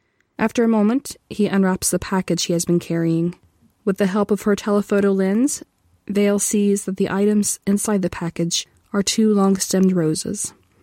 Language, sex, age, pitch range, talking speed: English, female, 20-39, 175-205 Hz, 165 wpm